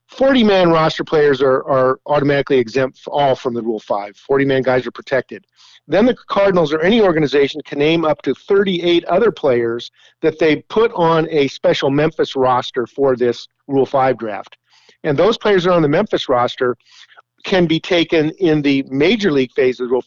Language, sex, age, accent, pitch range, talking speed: English, male, 50-69, American, 135-170 Hz, 185 wpm